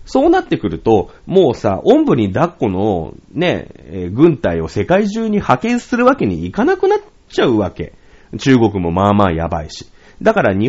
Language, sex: Japanese, male